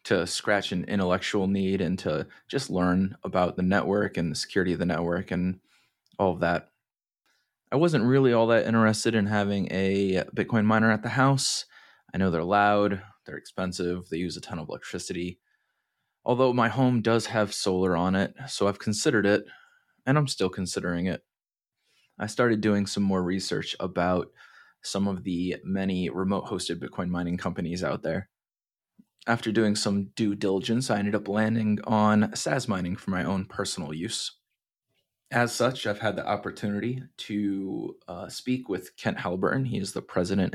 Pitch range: 95-115 Hz